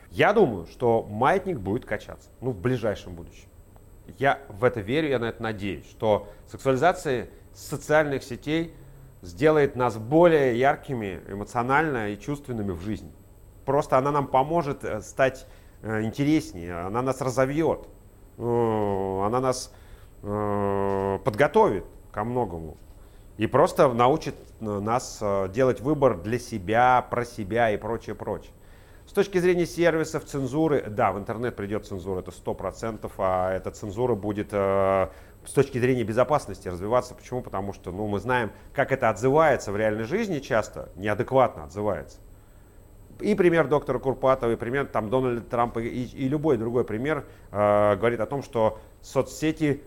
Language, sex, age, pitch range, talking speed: Russian, male, 30-49, 100-130 Hz, 140 wpm